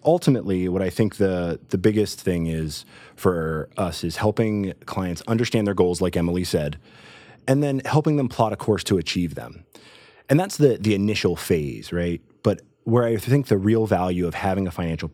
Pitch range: 85-110 Hz